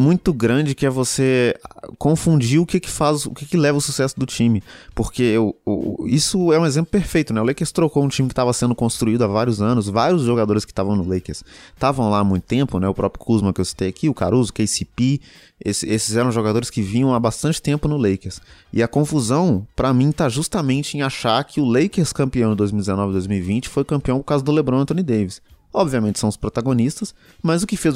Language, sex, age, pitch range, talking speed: Portuguese, male, 20-39, 100-135 Hz, 225 wpm